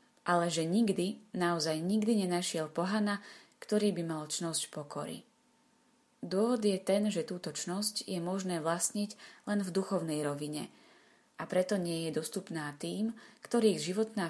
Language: Slovak